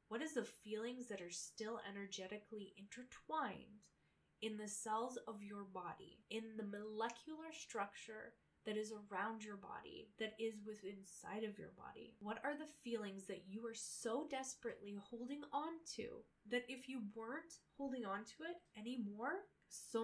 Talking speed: 160 wpm